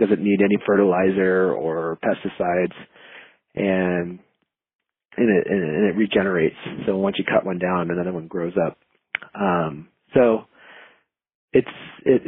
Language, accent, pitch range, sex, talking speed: English, American, 100-115 Hz, male, 125 wpm